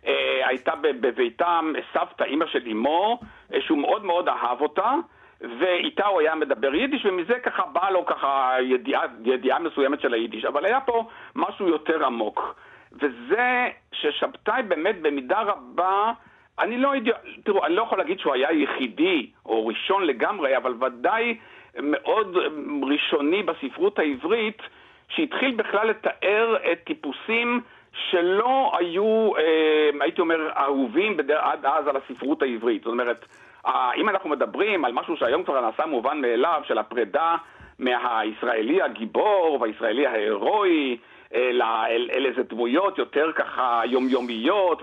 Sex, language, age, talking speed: male, Hebrew, 60-79, 130 wpm